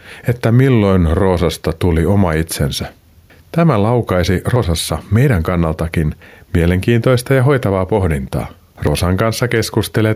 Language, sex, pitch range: Finnish, male, 85-120 Hz